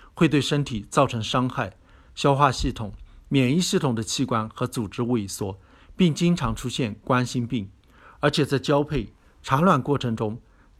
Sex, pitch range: male, 105-140 Hz